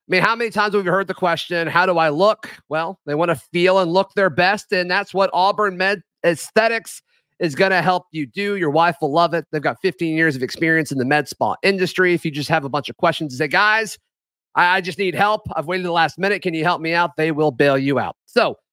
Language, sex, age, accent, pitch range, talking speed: English, male, 30-49, American, 160-195 Hz, 260 wpm